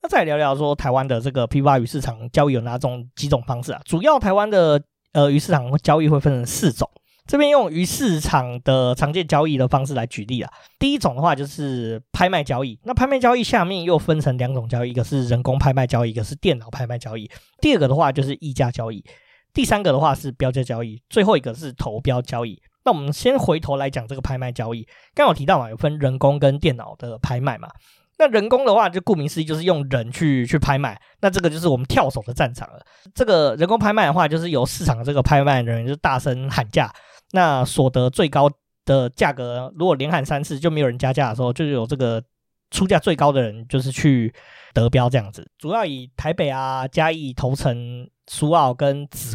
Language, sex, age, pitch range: Chinese, male, 20-39, 125-160 Hz